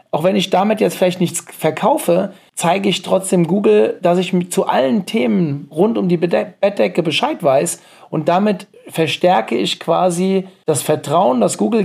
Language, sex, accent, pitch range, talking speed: German, male, German, 155-195 Hz, 160 wpm